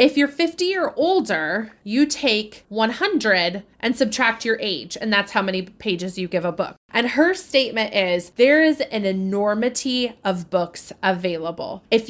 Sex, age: female, 20-39